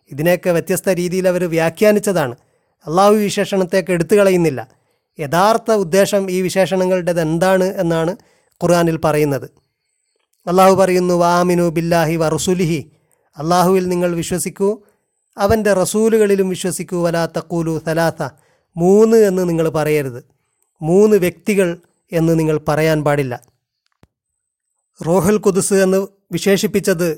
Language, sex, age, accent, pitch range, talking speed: Malayalam, male, 30-49, native, 160-190 Hz, 95 wpm